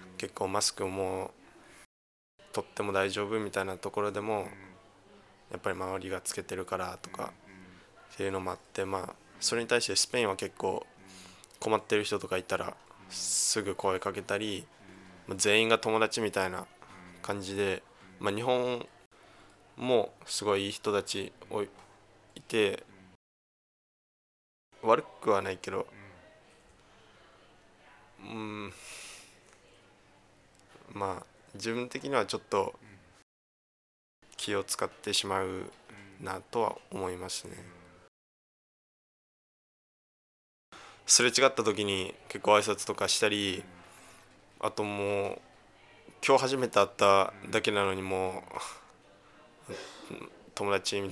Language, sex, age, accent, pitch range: Japanese, male, 20-39, native, 95-105 Hz